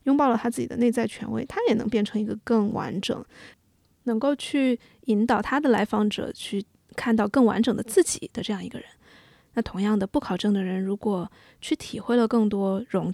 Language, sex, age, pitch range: Chinese, female, 20-39, 210-245 Hz